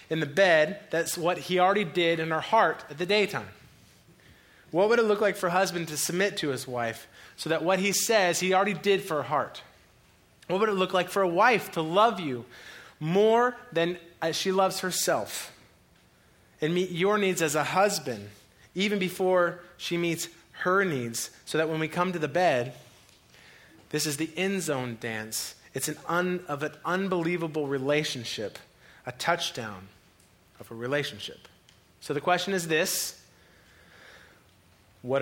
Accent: American